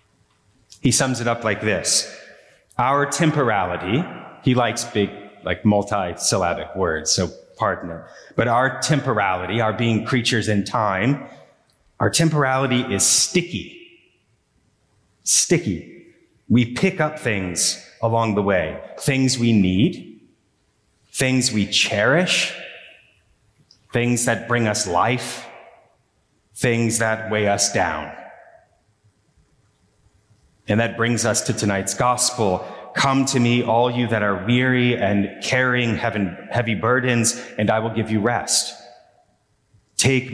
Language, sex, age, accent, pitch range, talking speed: English, male, 30-49, American, 105-125 Hz, 115 wpm